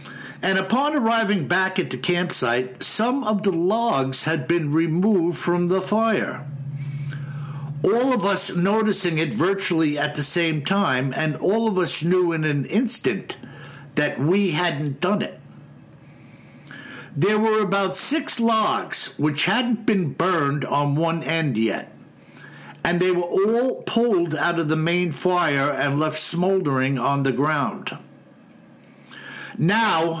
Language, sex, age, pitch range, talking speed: English, male, 60-79, 155-210 Hz, 140 wpm